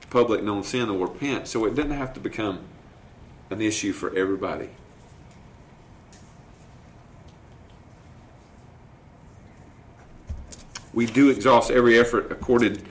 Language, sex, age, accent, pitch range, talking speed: English, male, 40-59, American, 105-130 Hz, 100 wpm